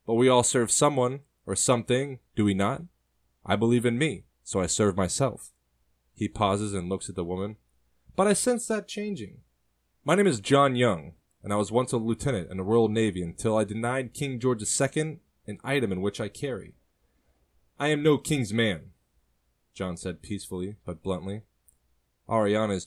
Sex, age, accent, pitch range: male, 20-39, American, 85-115 Hz